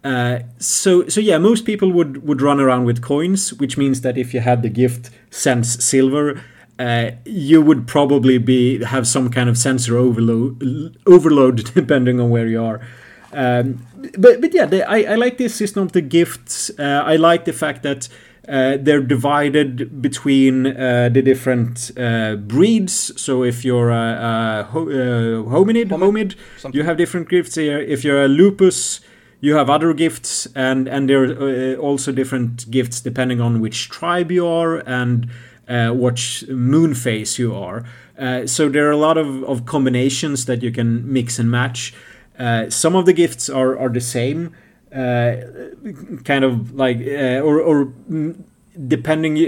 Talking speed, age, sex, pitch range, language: 170 wpm, 30-49, male, 120-155 Hz, English